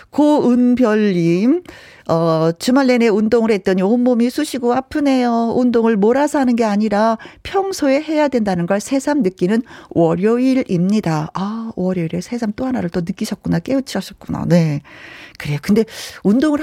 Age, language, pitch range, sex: 40-59, Korean, 185-265 Hz, female